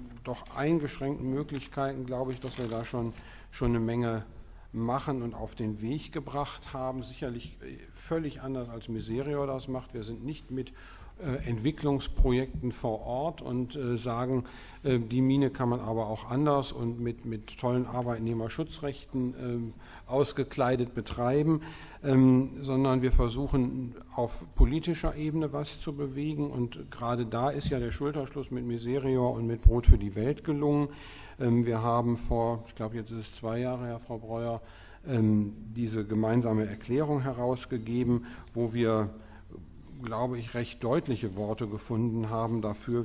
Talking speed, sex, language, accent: 150 wpm, male, German, German